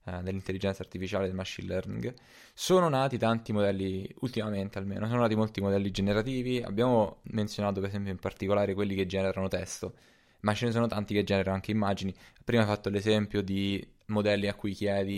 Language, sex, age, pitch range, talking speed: Italian, male, 20-39, 100-120 Hz, 175 wpm